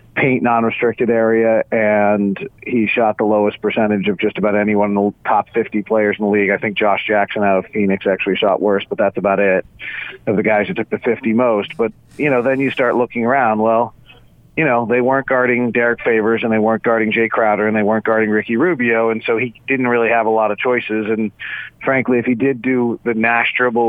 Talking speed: 225 wpm